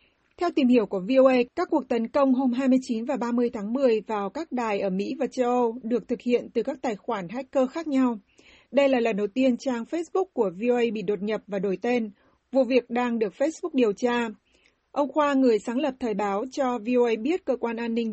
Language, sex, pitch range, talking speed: Vietnamese, female, 215-265 Hz, 230 wpm